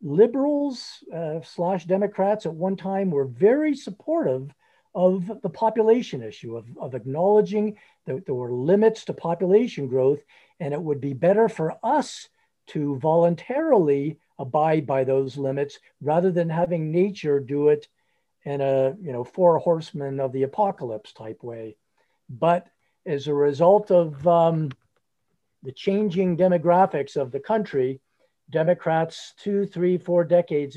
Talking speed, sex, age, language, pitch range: 140 wpm, male, 50-69, English, 135-185 Hz